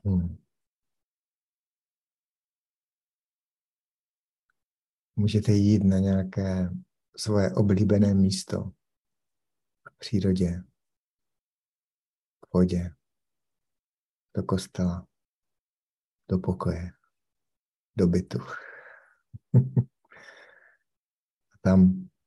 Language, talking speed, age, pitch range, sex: Czech, 50 wpm, 60-79, 95-105 Hz, male